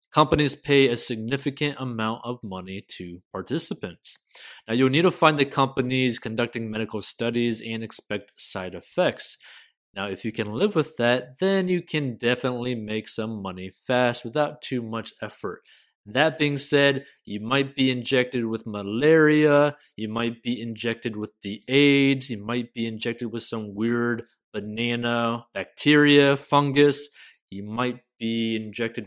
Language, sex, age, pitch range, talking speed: English, male, 20-39, 110-135 Hz, 150 wpm